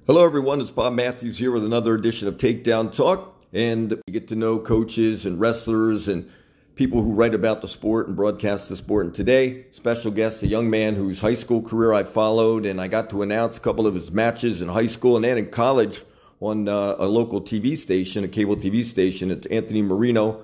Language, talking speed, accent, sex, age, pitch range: English, 215 wpm, American, male, 50-69, 100-115 Hz